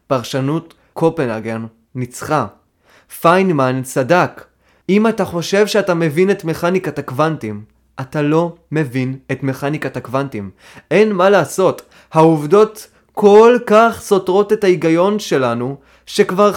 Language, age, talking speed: Hebrew, 20-39, 110 wpm